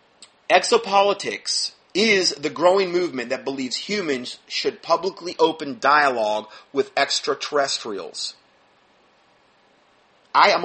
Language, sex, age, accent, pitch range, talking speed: English, male, 30-49, American, 125-185 Hz, 90 wpm